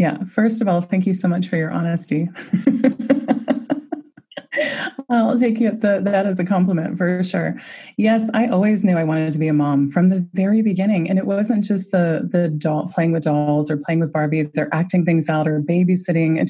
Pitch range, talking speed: 170-220 Hz, 205 wpm